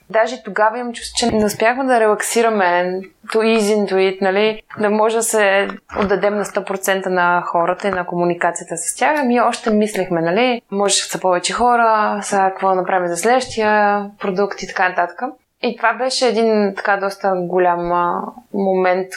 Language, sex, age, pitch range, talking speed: Bulgarian, female, 20-39, 185-230 Hz, 165 wpm